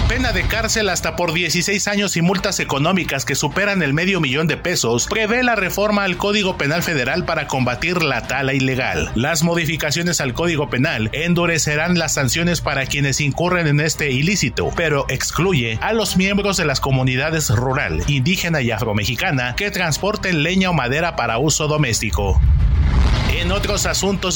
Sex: male